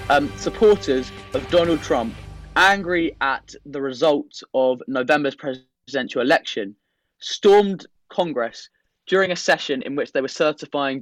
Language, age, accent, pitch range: English, 20-39, British, 135-170 Hz